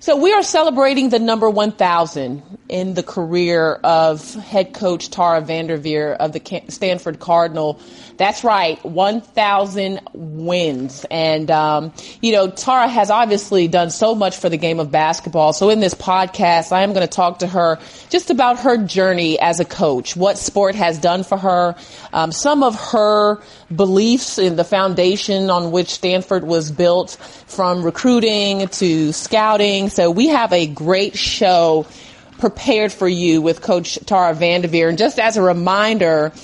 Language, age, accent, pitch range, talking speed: English, 30-49, American, 165-200 Hz, 160 wpm